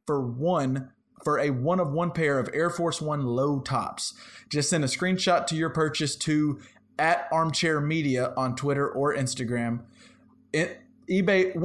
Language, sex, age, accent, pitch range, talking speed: English, male, 30-49, American, 130-155 Hz, 160 wpm